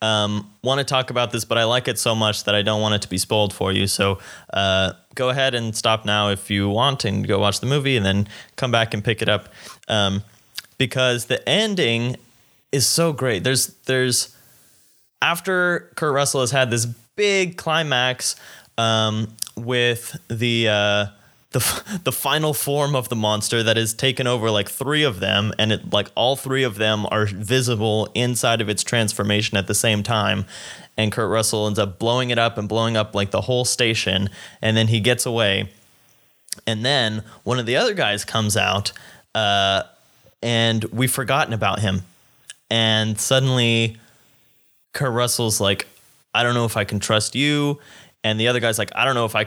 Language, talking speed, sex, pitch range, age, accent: English, 190 wpm, male, 105-130 Hz, 20-39, American